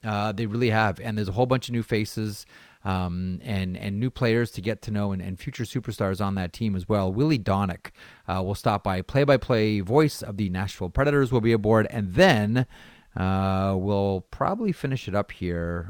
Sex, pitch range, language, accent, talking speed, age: male, 95-120 Hz, English, American, 205 wpm, 30-49